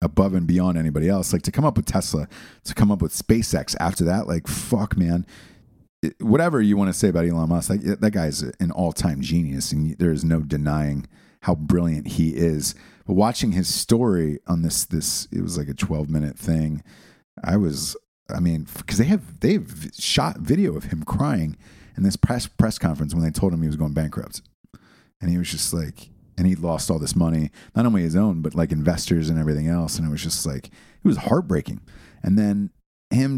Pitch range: 80-95 Hz